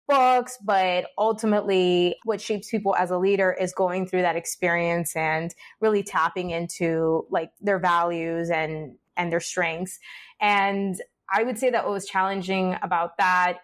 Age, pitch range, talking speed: 20-39, 170-200 Hz, 155 wpm